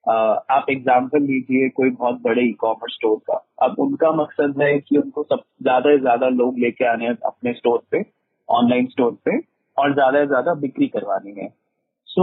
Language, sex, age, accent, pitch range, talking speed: Hindi, male, 30-49, native, 125-165 Hz, 190 wpm